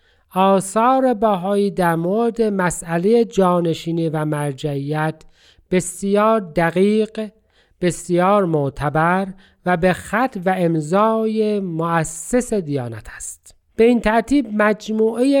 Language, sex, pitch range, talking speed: Persian, male, 170-220 Hz, 95 wpm